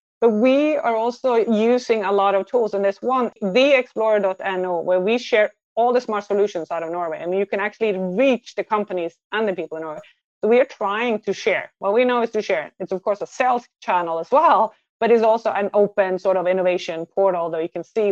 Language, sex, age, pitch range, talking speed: English, female, 30-49, 170-220 Hz, 230 wpm